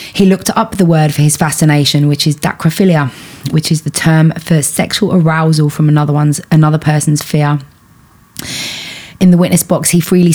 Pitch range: 150-170 Hz